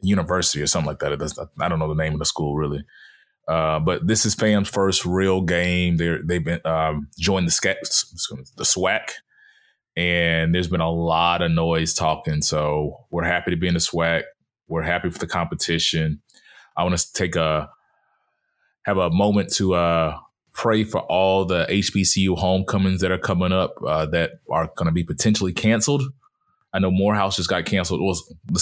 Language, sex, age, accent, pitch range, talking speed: English, male, 20-39, American, 80-95 Hz, 190 wpm